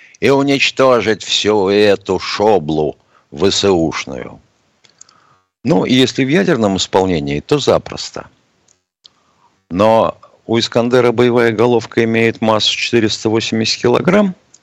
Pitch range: 90-125 Hz